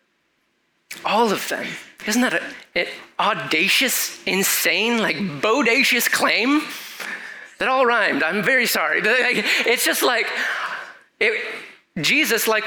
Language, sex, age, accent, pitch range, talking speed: English, male, 20-39, American, 165-225 Hz, 110 wpm